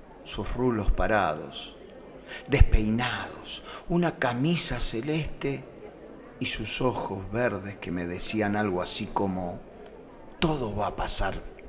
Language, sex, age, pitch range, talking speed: Spanish, male, 40-59, 95-125 Hz, 110 wpm